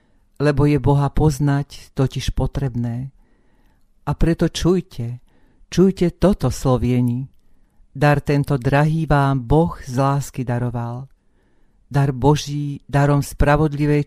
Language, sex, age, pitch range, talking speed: Slovak, female, 50-69, 130-150 Hz, 100 wpm